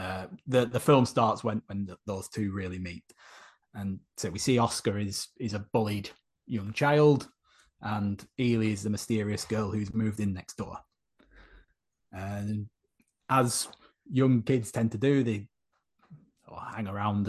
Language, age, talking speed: English, 20-39, 155 wpm